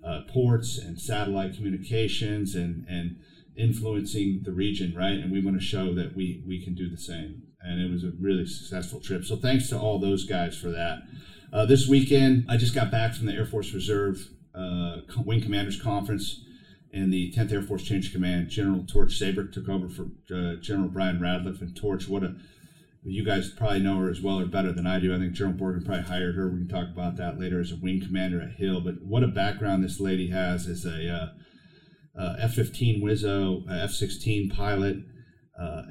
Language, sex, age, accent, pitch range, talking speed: English, male, 40-59, American, 90-105 Hz, 205 wpm